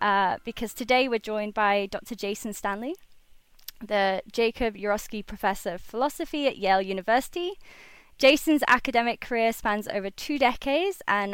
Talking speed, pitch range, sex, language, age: 140 wpm, 210-275 Hz, female, English, 20-39